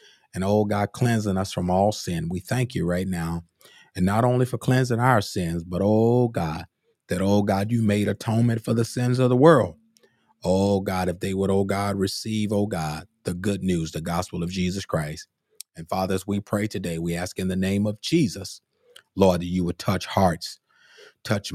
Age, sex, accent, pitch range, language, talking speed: 30-49, male, American, 85-105 Hz, English, 200 wpm